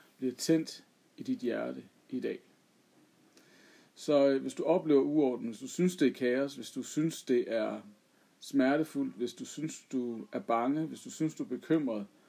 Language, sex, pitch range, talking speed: Danish, male, 110-165 Hz, 180 wpm